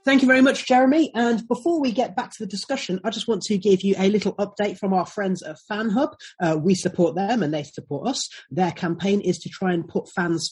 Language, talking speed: English, 245 wpm